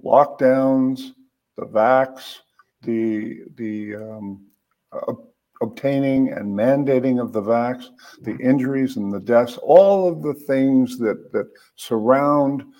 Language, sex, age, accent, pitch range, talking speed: English, male, 50-69, American, 110-135 Hz, 115 wpm